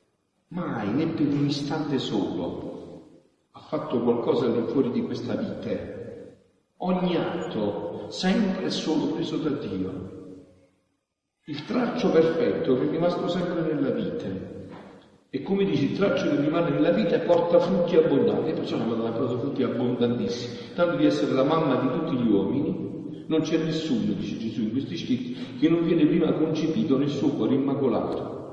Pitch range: 135-195 Hz